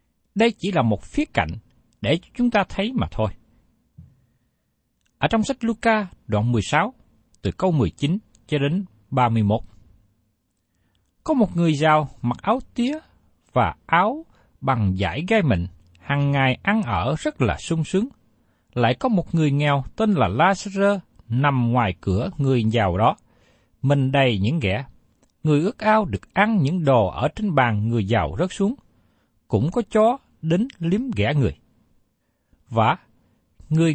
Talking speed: 150 wpm